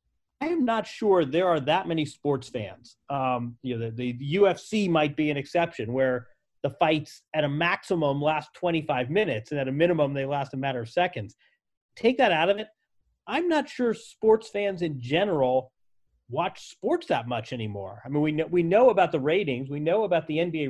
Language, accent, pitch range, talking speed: English, American, 140-185 Hz, 205 wpm